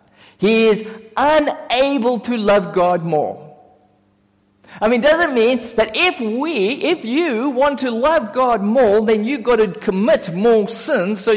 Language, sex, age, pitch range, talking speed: English, male, 50-69, 145-245 Hz, 165 wpm